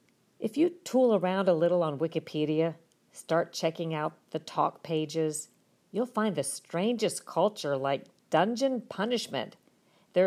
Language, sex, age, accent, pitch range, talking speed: English, female, 50-69, American, 150-185 Hz, 135 wpm